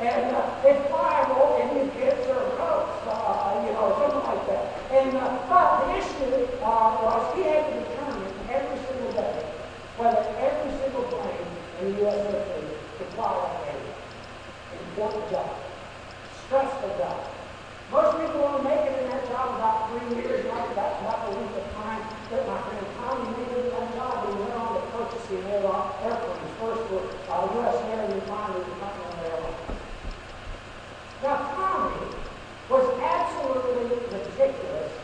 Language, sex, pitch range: English, male, 220-290 Hz